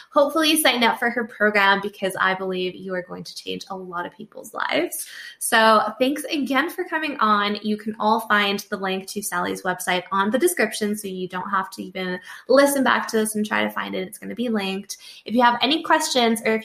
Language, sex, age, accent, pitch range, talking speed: English, female, 20-39, American, 195-235 Hz, 230 wpm